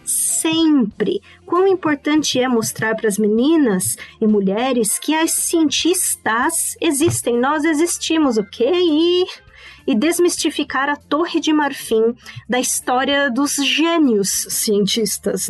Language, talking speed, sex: Portuguese, 110 wpm, female